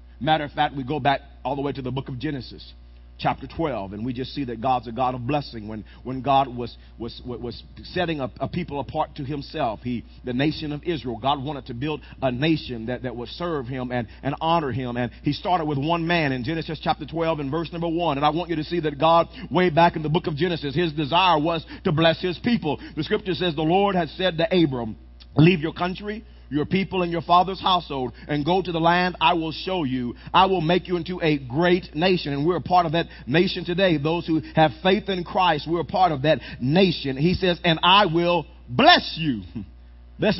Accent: American